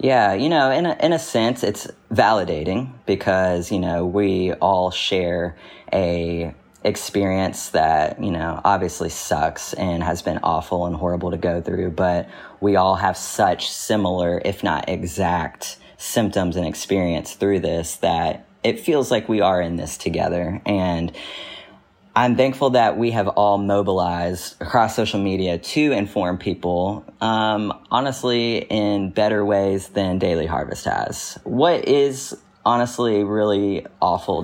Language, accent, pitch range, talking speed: English, American, 90-110 Hz, 145 wpm